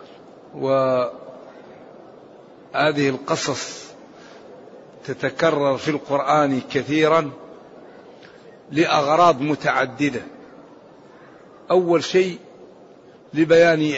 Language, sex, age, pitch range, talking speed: Arabic, male, 60-79, 155-180 Hz, 45 wpm